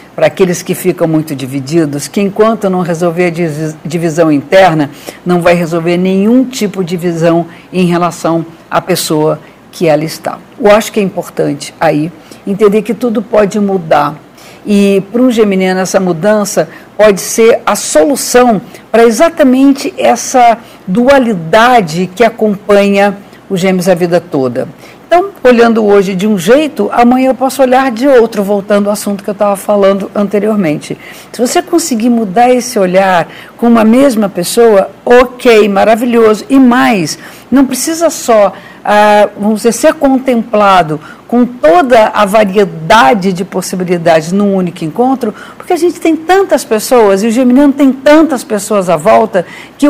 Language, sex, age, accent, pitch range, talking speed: Portuguese, female, 50-69, Brazilian, 185-245 Hz, 150 wpm